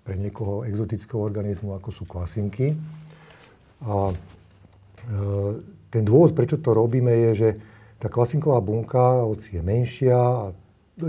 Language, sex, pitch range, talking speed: Slovak, male, 100-125 Hz, 130 wpm